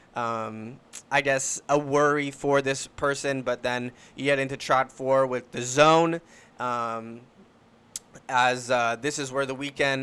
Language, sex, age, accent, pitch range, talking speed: English, male, 20-39, American, 125-145 Hz, 155 wpm